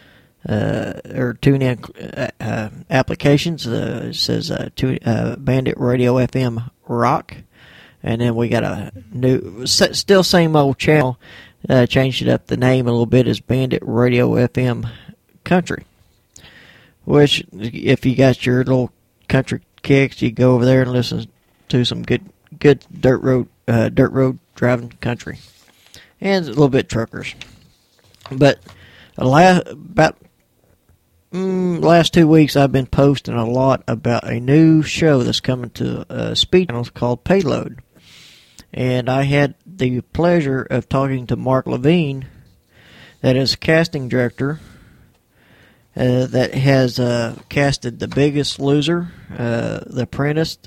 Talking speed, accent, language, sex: 145 wpm, American, English, male